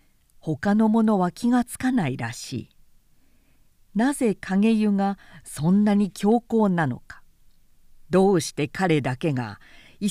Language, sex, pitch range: Japanese, female, 150-235 Hz